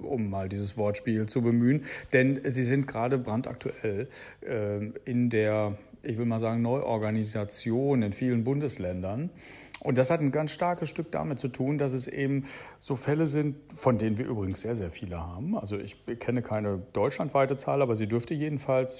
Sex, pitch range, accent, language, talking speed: male, 105-140 Hz, German, German, 175 wpm